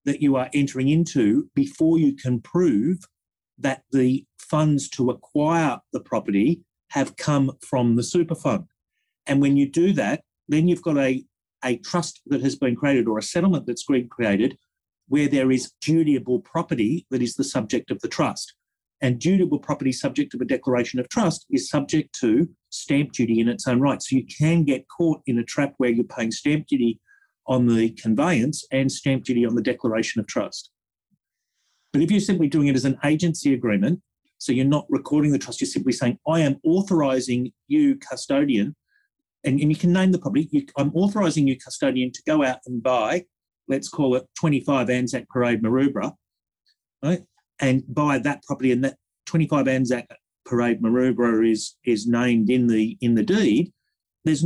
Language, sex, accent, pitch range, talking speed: English, male, Australian, 125-165 Hz, 180 wpm